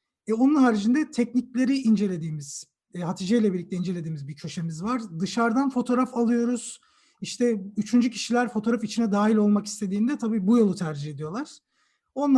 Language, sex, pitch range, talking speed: Turkish, male, 200-255 Hz, 140 wpm